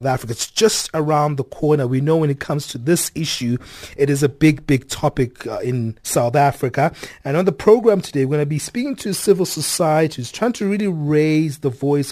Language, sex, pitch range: English, male, 135-160 Hz